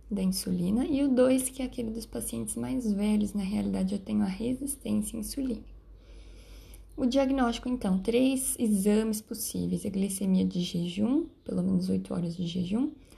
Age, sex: 10-29, female